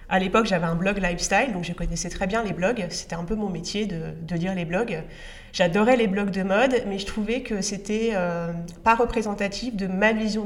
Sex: female